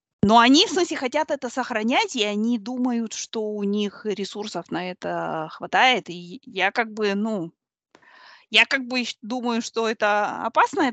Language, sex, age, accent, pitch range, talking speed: Russian, female, 20-39, native, 195-255 Hz, 160 wpm